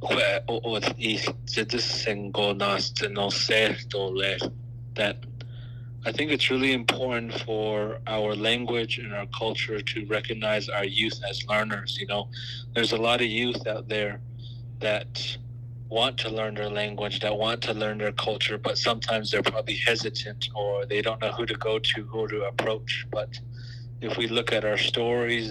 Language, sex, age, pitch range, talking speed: English, male, 30-49, 105-120 Hz, 145 wpm